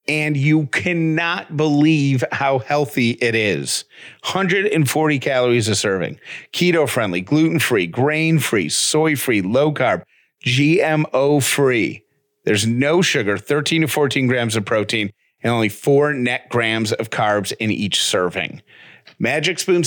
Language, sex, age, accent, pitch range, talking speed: English, male, 40-59, American, 120-150 Hz, 120 wpm